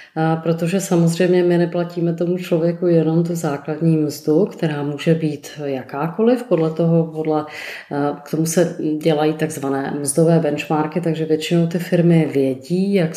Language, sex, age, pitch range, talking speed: Czech, female, 30-49, 155-180 Hz, 140 wpm